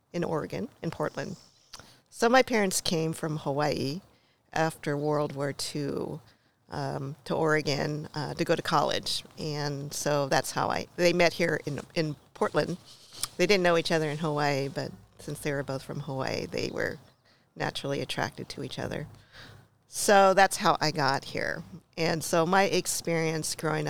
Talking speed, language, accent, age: 165 wpm, English, American, 50-69